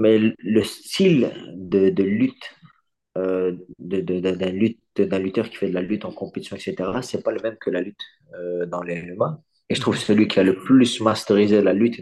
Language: French